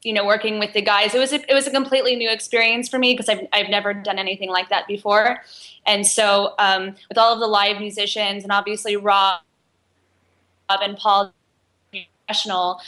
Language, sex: English, female